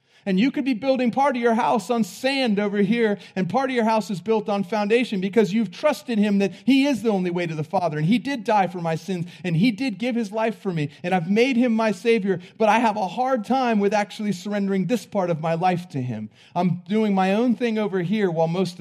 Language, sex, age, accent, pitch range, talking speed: English, male, 30-49, American, 140-215 Hz, 260 wpm